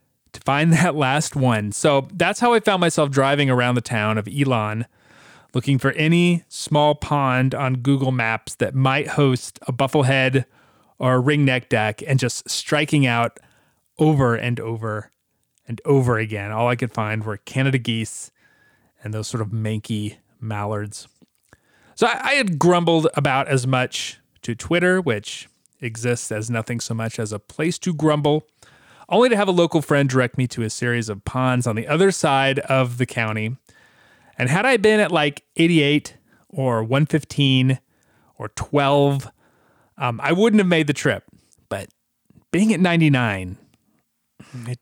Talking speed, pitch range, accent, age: 160 wpm, 115-150 Hz, American, 30-49